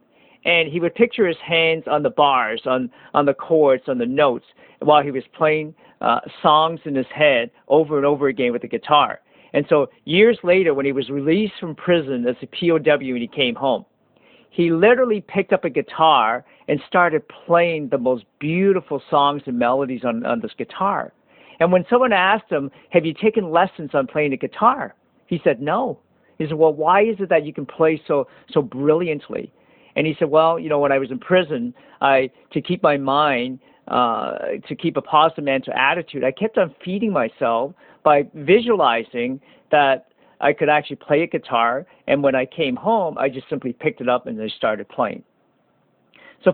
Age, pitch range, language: 50-69, 135-185 Hz, English